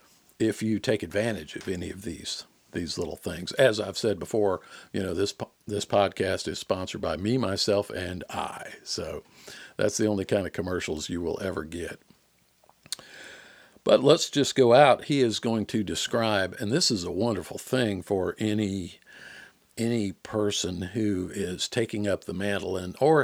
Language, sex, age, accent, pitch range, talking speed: English, male, 50-69, American, 95-120 Hz, 170 wpm